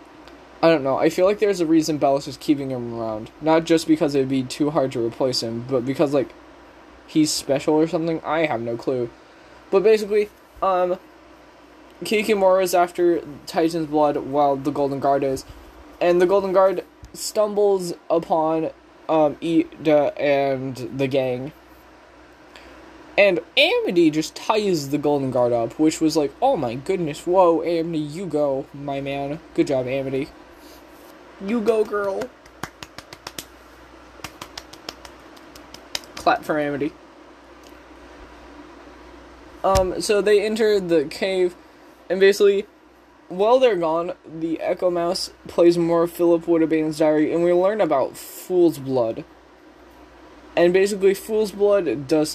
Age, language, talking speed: 10-29, English, 140 wpm